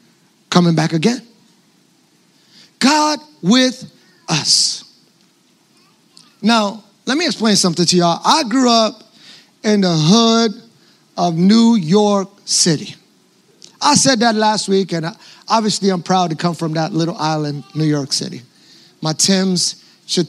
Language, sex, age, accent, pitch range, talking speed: English, male, 30-49, American, 195-300 Hz, 130 wpm